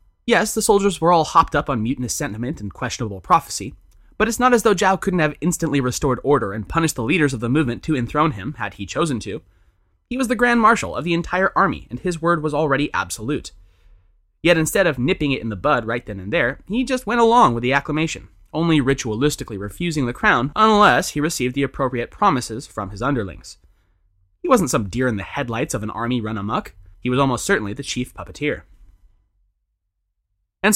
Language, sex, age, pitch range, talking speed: English, male, 20-39, 100-165 Hz, 205 wpm